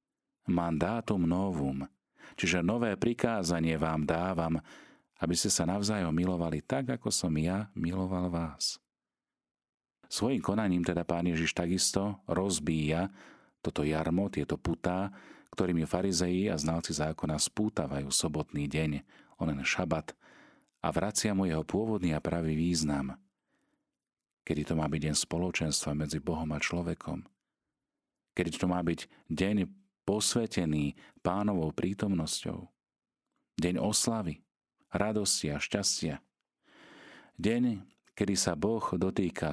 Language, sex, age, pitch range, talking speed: Slovak, male, 40-59, 80-95 Hz, 115 wpm